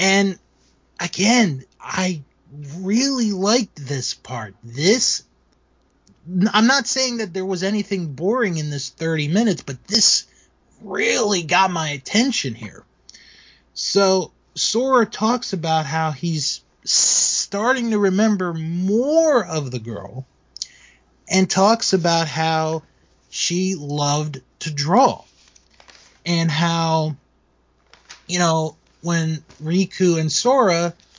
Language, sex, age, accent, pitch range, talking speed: English, male, 30-49, American, 140-190 Hz, 110 wpm